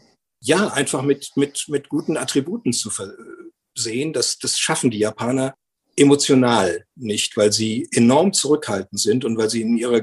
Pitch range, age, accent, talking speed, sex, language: 120-150 Hz, 50-69, German, 155 wpm, male, German